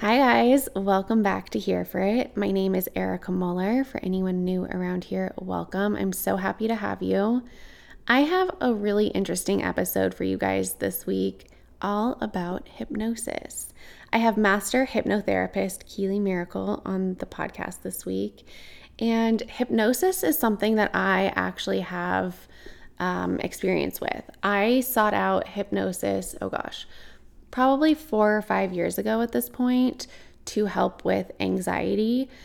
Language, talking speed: English, 150 wpm